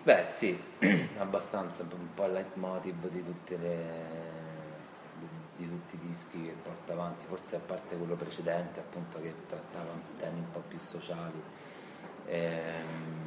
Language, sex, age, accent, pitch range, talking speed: Italian, male, 30-49, native, 80-90 Hz, 135 wpm